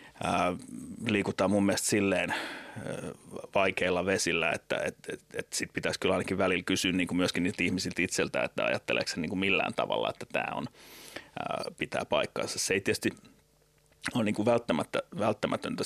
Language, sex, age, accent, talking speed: Finnish, male, 30-49, native, 165 wpm